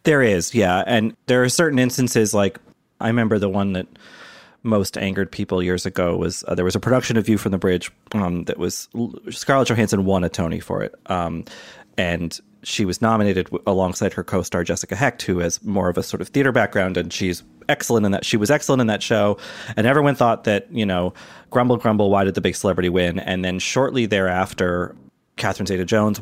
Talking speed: 205 wpm